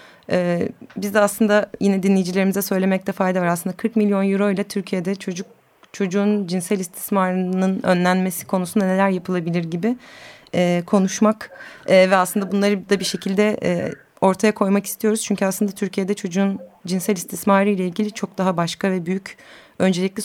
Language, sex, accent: Turkish, female, native